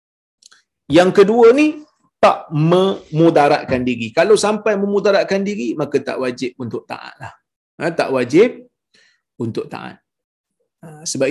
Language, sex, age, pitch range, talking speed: Malayalam, male, 40-59, 150-220 Hz, 115 wpm